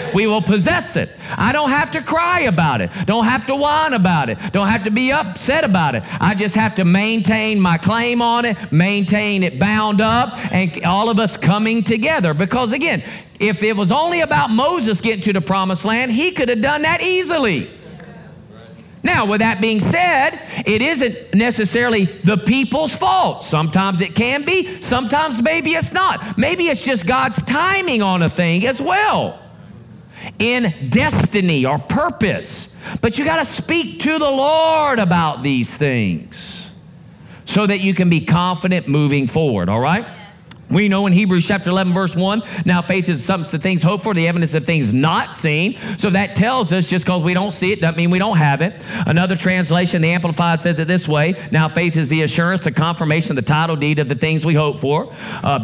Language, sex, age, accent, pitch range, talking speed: English, male, 40-59, American, 165-225 Hz, 190 wpm